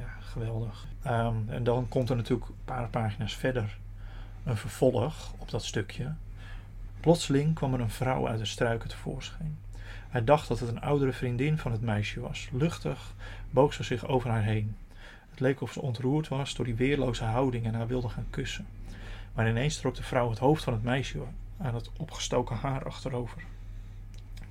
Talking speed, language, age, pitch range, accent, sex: 185 wpm, Dutch, 40-59, 105-130 Hz, Dutch, male